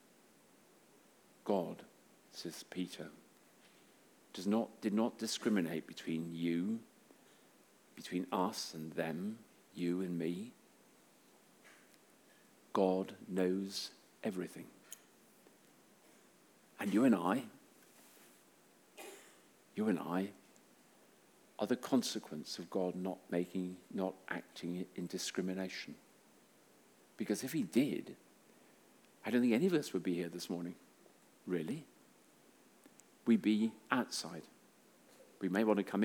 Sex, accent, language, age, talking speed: male, British, English, 50-69, 105 wpm